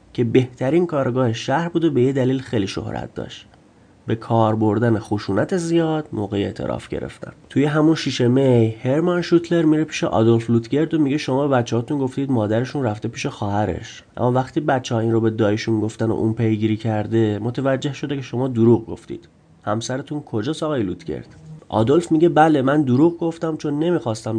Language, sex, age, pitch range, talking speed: Persian, male, 30-49, 115-150 Hz, 170 wpm